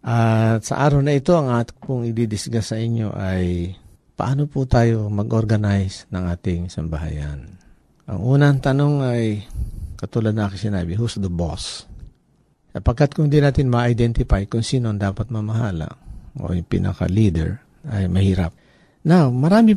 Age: 50-69